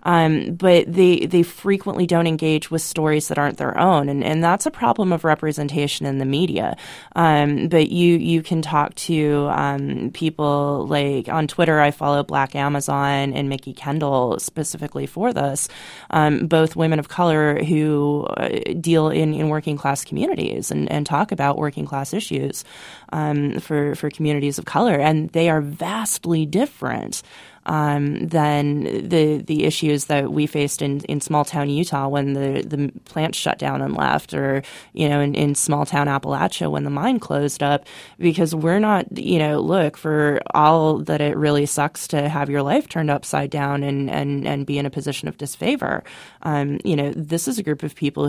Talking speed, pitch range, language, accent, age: 180 wpm, 140-160 Hz, English, American, 20-39